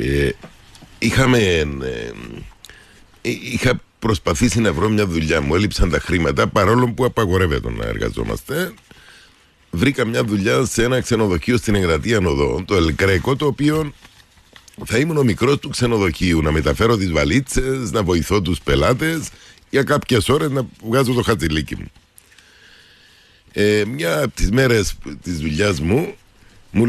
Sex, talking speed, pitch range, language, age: male, 140 wpm, 95-125 Hz, Greek, 50-69